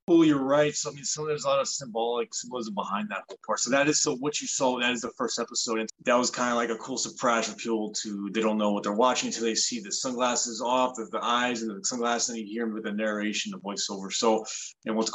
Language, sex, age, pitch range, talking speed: English, male, 30-49, 105-120 Hz, 285 wpm